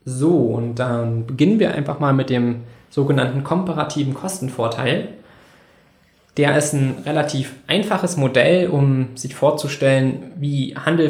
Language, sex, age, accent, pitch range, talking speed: German, male, 20-39, German, 130-150 Hz, 125 wpm